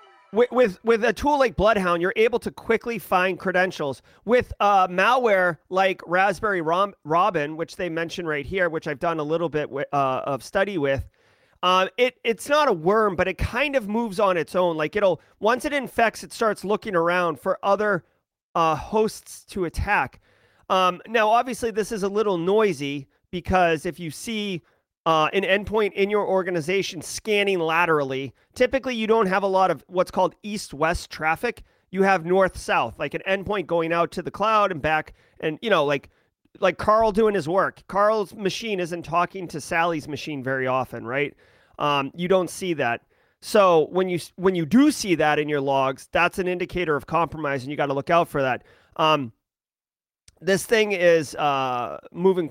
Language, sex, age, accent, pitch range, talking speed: English, male, 30-49, American, 160-205 Hz, 185 wpm